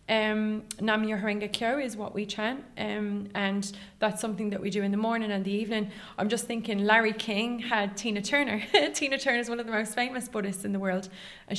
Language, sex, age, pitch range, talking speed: English, female, 20-39, 205-235 Hz, 200 wpm